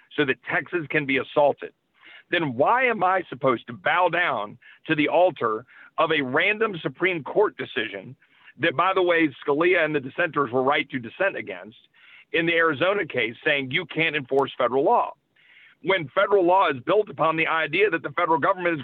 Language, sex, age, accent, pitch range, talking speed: English, male, 50-69, American, 150-195 Hz, 190 wpm